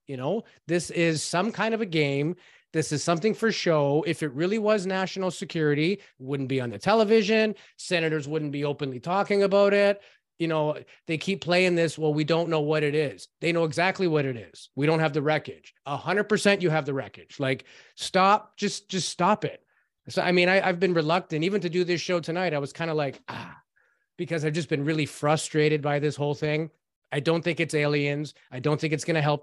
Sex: male